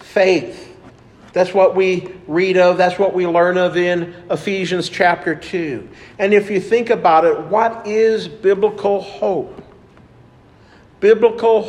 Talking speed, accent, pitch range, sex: 135 wpm, American, 165-195 Hz, male